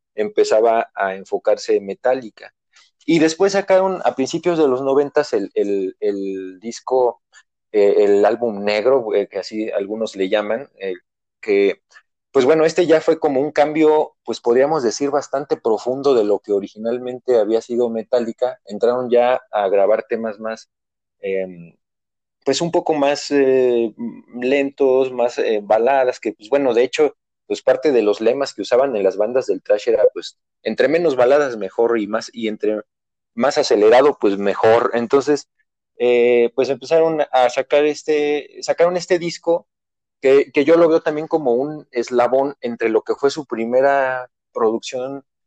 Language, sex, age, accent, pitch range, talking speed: Spanish, male, 30-49, Mexican, 115-165 Hz, 160 wpm